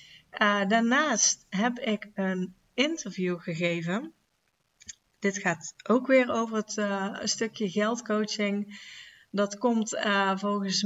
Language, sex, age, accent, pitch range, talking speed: Dutch, female, 30-49, Dutch, 195-230 Hz, 110 wpm